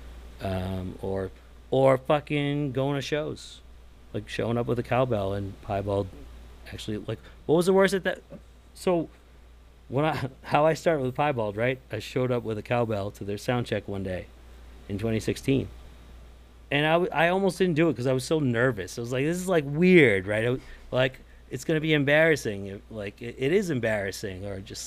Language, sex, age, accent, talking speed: English, male, 40-59, American, 195 wpm